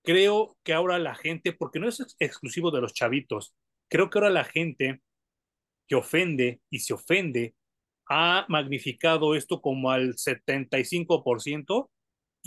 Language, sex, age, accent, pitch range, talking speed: Spanish, male, 40-59, Mexican, 140-190 Hz, 140 wpm